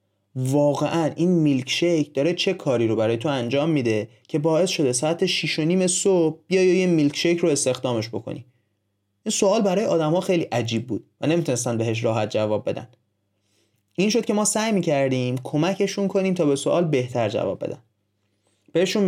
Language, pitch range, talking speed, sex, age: Persian, 120-175 Hz, 165 wpm, male, 30-49